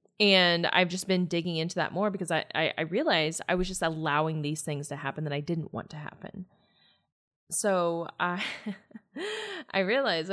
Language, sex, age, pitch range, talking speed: English, female, 20-39, 155-210 Hz, 180 wpm